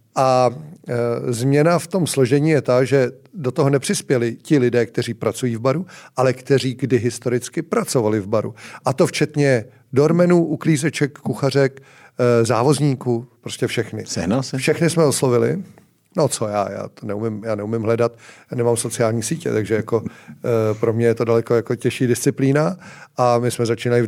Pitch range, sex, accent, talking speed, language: 120-145 Hz, male, native, 160 wpm, Czech